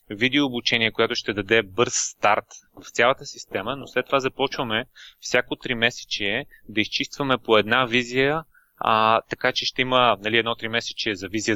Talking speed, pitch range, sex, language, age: 160 wpm, 105-125 Hz, male, Bulgarian, 20-39